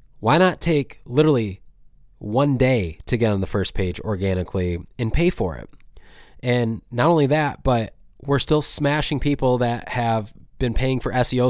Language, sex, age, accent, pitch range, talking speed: English, male, 20-39, American, 110-145 Hz, 165 wpm